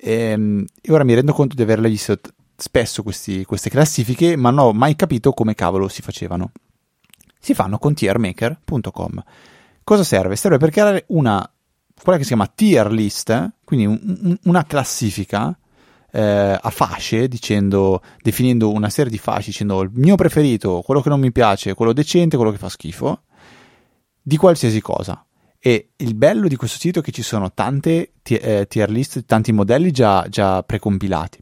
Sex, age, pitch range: male, 30-49, 100-135 Hz